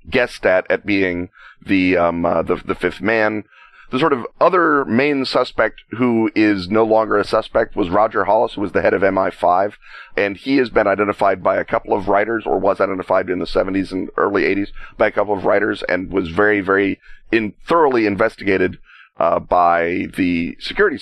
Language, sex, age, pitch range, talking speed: English, male, 30-49, 90-110 Hz, 195 wpm